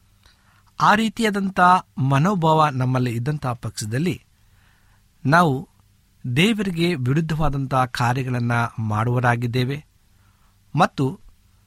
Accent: native